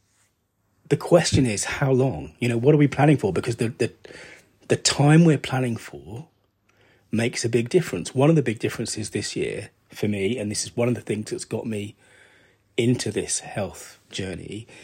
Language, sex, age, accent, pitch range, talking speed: English, male, 30-49, British, 105-130 Hz, 190 wpm